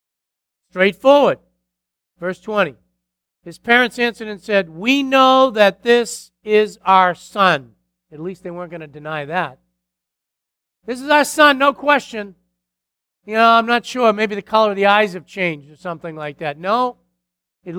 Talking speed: 160 wpm